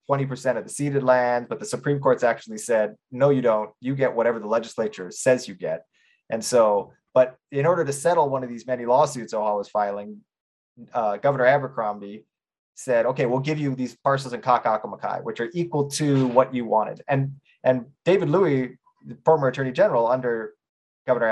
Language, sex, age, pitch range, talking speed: English, male, 20-39, 115-145 Hz, 185 wpm